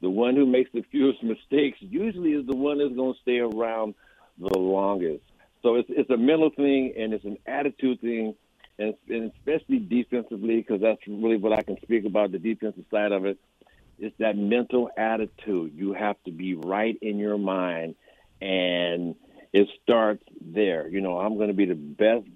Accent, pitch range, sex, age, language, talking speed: American, 100-125 Hz, male, 60-79, English, 190 wpm